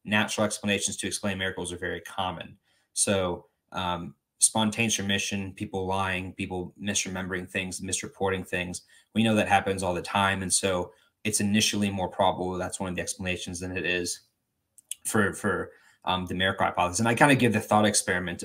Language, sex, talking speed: English, male, 175 wpm